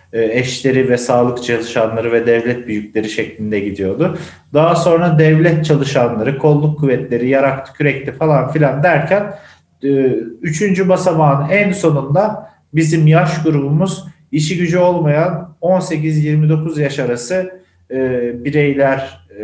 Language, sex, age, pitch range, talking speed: Turkish, male, 40-59, 125-165 Hz, 105 wpm